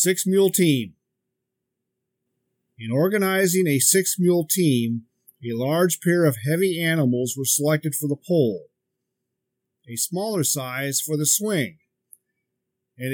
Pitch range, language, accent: 125-175 Hz, English, American